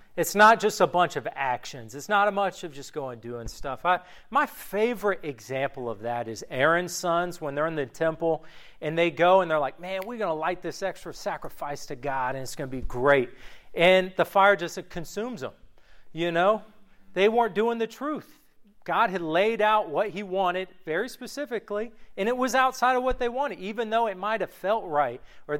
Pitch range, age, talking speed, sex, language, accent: 155-210 Hz, 40-59, 210 wpm, male, English, American